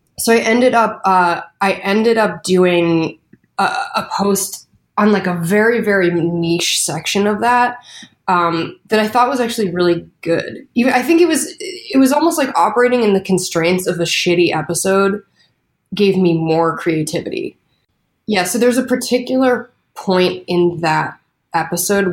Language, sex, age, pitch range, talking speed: English, female, 20-39, 170-210 Hz, 155 wpm